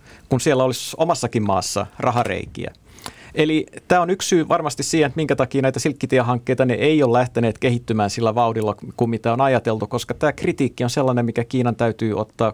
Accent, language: native, Finnish